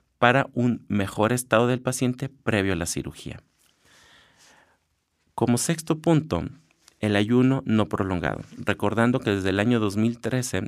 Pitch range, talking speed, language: 95-120 Hz, 130 wpm, Spanish